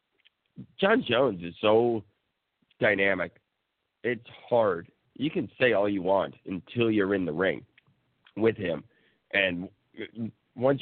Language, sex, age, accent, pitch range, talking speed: English, male, 50-69, American, 100-125 Hz, 120 wpm